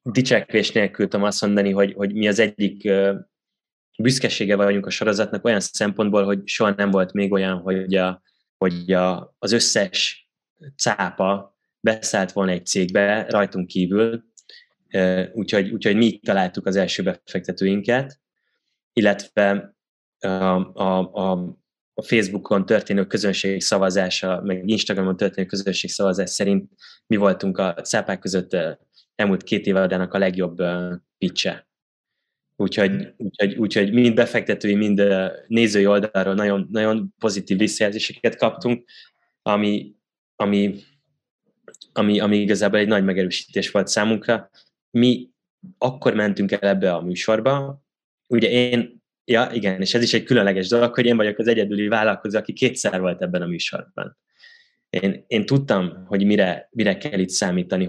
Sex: male